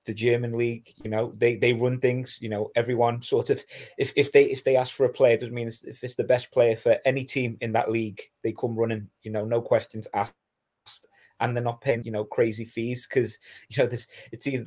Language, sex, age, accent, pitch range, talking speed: English, male, 20-39, British, 115-130 Hz, 235 wpm